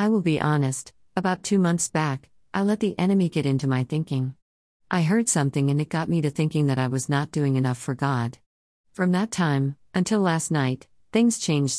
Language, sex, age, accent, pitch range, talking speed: English, female, 50-69, American, 130-170 Hz, 210 wpm